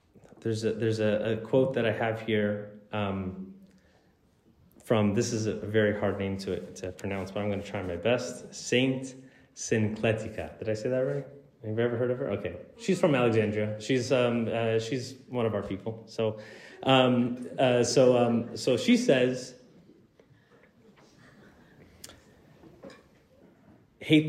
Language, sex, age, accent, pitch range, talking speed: English, male, 30-49, American, 110-130 Hz, 155 wpm